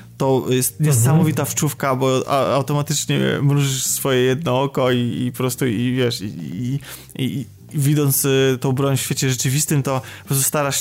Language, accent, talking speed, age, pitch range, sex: Polish, native, 160 wpm, 20-39, 135-160 Hz, male